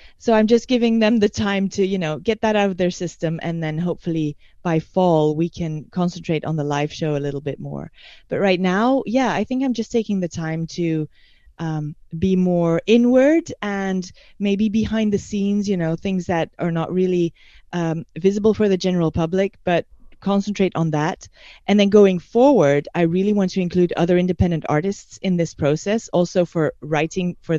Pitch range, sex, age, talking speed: 165-200 Hz, female, 30-49, 195 wpm